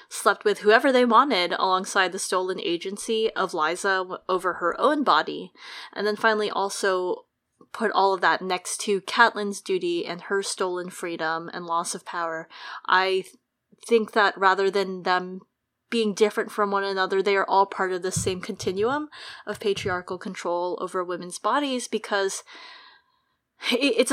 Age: 20-39